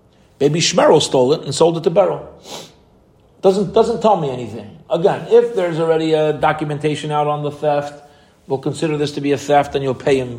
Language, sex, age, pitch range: English, male, 40-59, 145-215 Hz